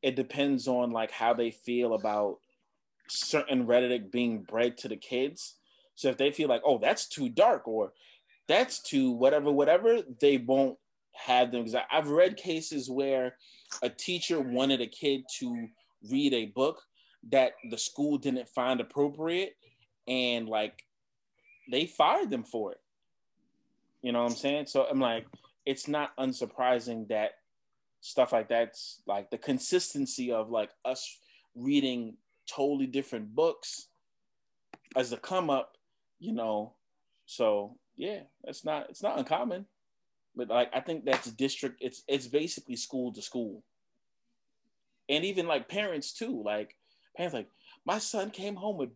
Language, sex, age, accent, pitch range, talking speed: English, male, 20-39, American, 125-200 Hz, 150 wpm